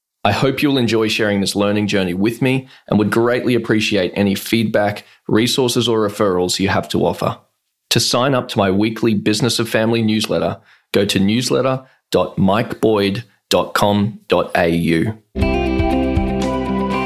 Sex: male